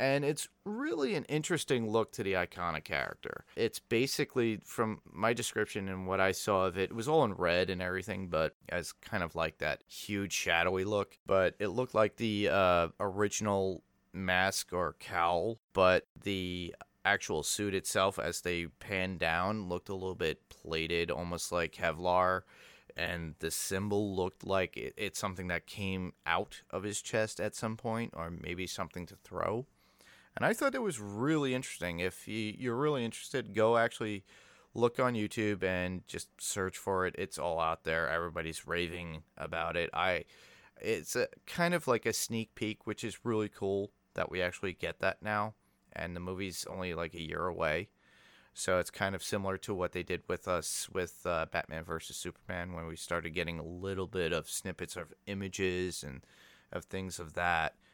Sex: male